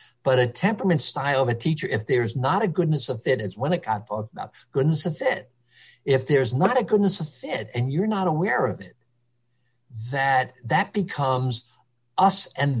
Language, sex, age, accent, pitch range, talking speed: English, male, 50-69, American, 120-150 Hz, 185 wpm